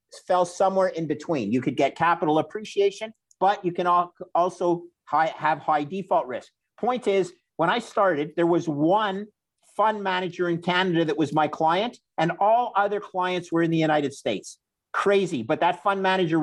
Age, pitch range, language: 50-69, 155-190 Hz, English